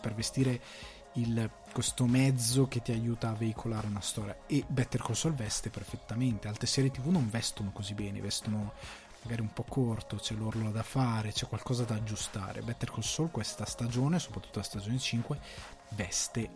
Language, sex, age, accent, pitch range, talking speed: Italian, male, 20-39, native, 110-130 Hz, 175 wpm